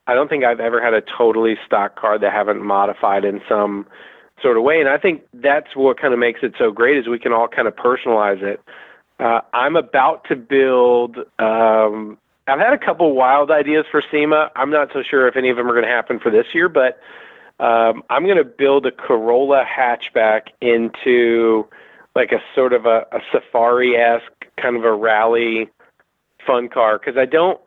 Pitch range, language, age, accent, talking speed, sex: 115-140 Hz, English, 40-59, American, 200 wpm, male